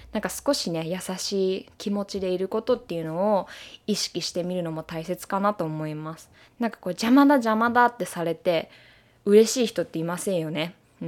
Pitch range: 180-250 Hz